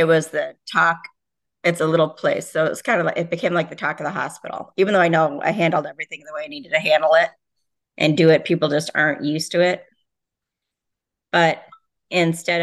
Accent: American